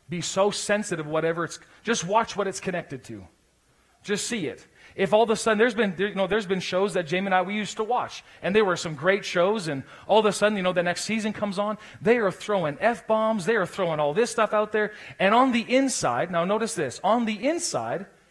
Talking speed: 245 wpm